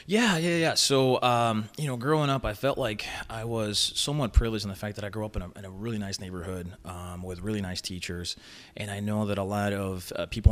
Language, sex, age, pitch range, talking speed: English, male, 30-49, 95-110 Hz, 245 wpm